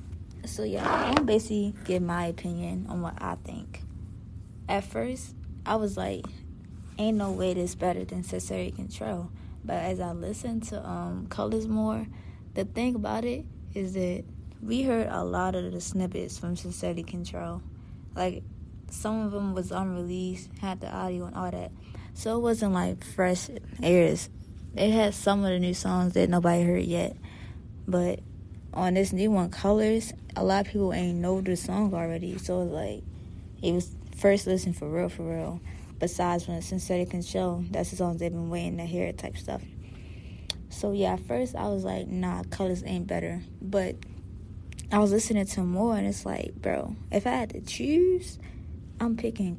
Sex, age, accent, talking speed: female, 20-39, American, 175 wpm